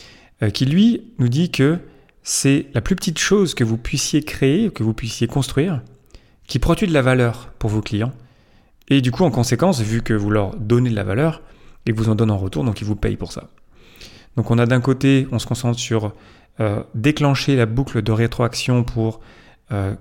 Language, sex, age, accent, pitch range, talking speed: French, male, 30-49, French, 110-135 Hz, 205 wpm